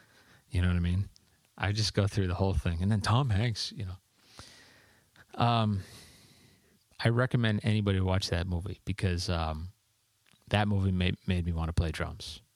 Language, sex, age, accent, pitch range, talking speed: English, male, 30-49, American, 90-110 Hz, 170 wpm